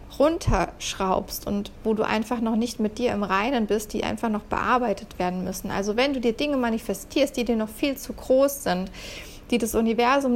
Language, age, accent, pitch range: German, 40-59, German, 210-245 Hz